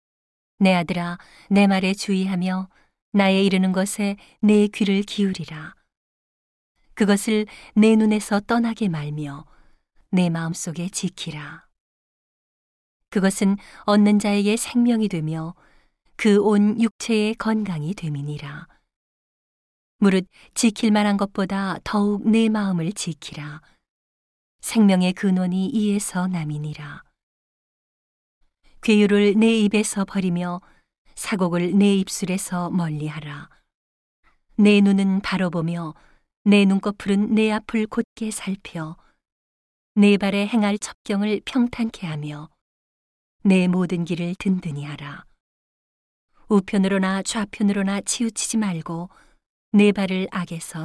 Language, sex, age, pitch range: Korean, female, 40-59, 170-210 Hz